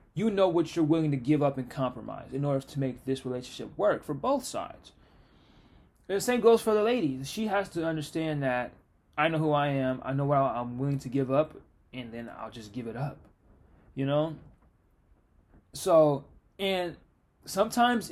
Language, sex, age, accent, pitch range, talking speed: English, male, 20-39, American, 130-170 Hz, 190 wpm